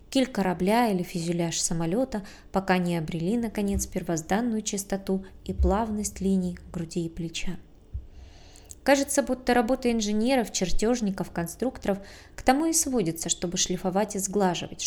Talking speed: 125 wpm